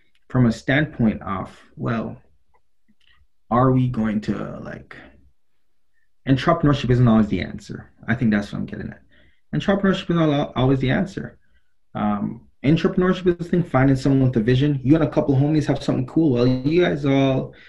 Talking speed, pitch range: 175 wpm, 120-160 Hz